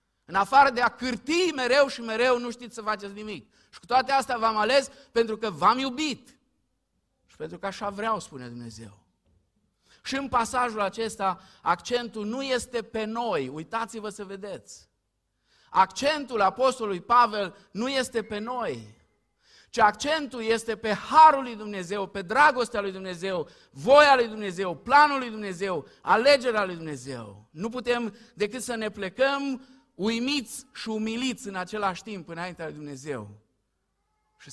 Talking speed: 150 wpm